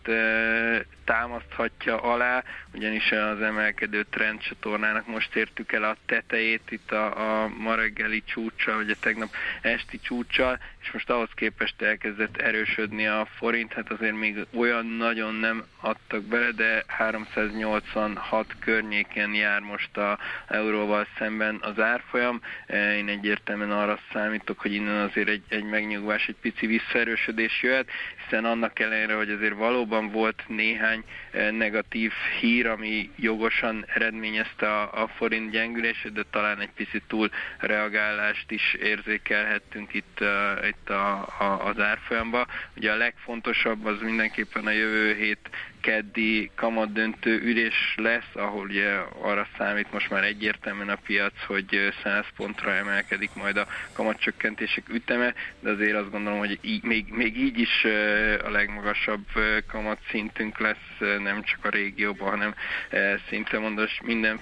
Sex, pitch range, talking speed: male, 105-110 Hz, 130 wpm